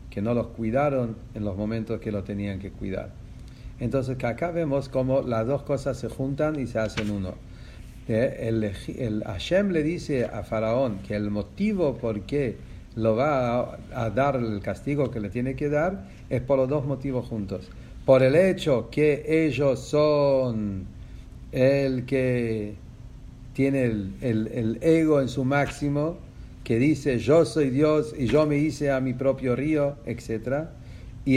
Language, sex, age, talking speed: English, male, 50-69, 165 wpm